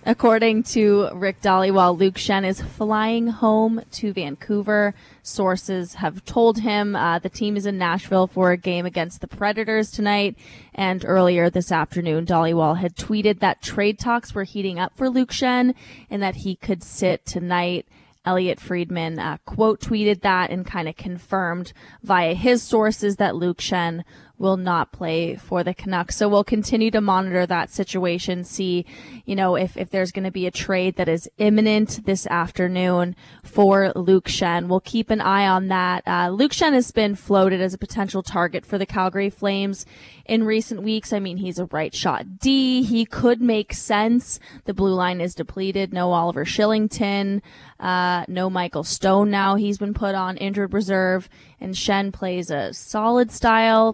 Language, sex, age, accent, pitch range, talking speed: English, female, 20-39, American, 180-220 Hz, 175 wpm